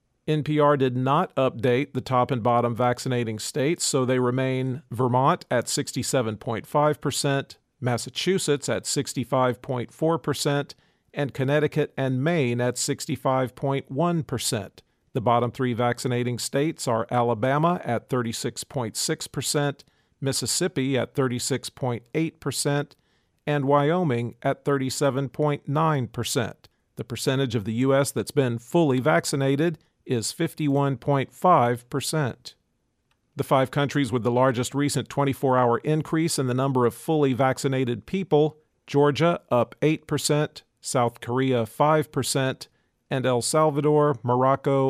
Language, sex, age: English, male, 50-69